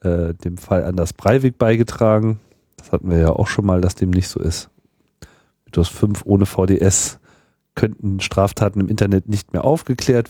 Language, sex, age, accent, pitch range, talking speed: German, male, 40-59, German, 95-115 Hz, 170 wpm